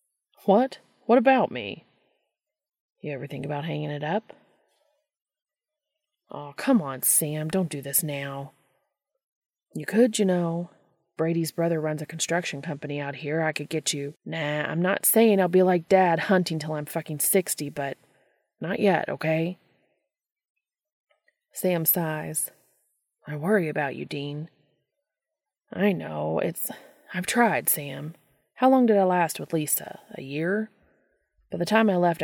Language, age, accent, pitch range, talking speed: English, 30-49, American, 150-210 Hz, 150 wpm